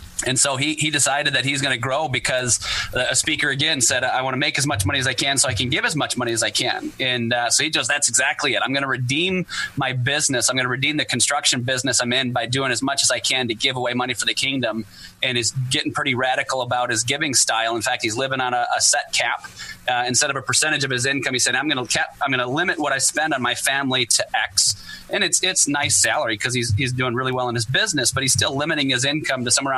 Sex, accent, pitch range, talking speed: male, American, 125-140 Hz, 275 wpm